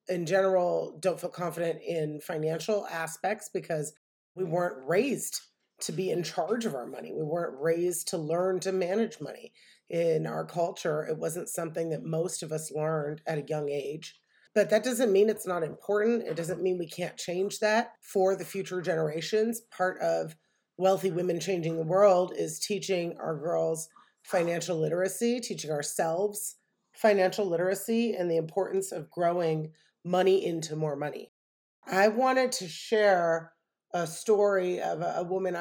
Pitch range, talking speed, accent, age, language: 165-210 Hz, 160 wpm, American, 30-49, English